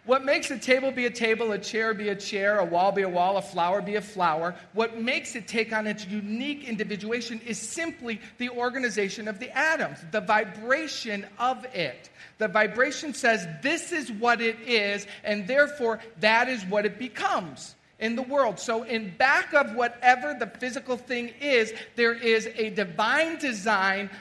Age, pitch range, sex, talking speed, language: 40-59, 200-250 Hz, male, 180 wpm, English